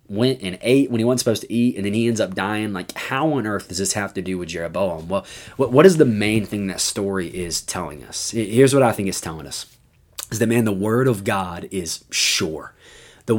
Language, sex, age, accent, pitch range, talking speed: English, male, 20-39, American, 100-125 Hz, 240 wpm